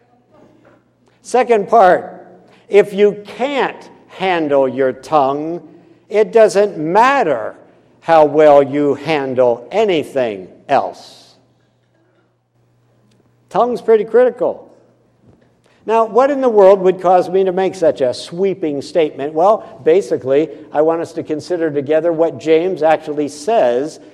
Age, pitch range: 60-79, 145-205 Hz